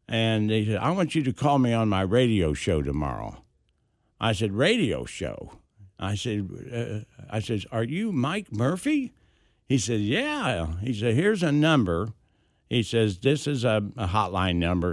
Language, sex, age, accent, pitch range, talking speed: English, male, 60-79, American, 95-120 Hz, 175 wpm